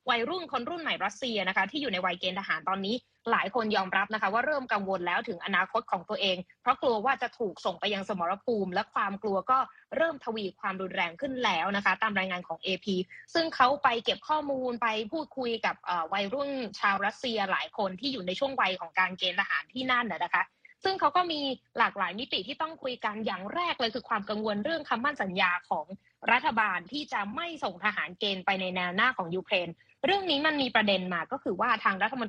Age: 20-39